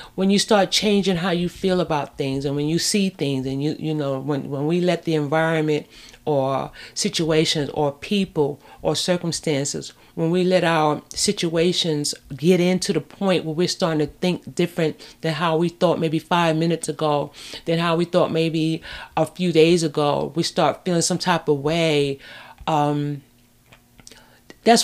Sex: female